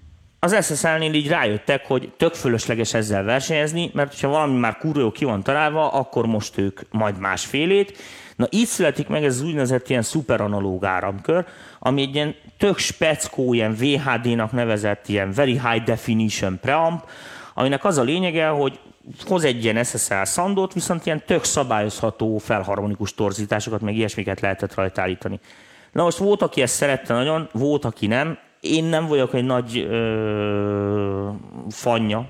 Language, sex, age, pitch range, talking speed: Hungarian, male, 30-49, 105-140 Hz, 155 wpm